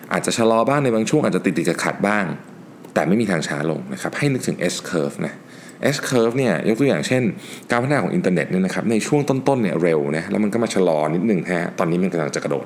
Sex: male